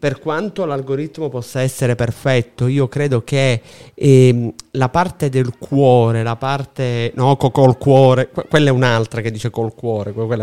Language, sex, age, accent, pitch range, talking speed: Italian, male, 30-49, native, 120-150 Hz, 150 wpm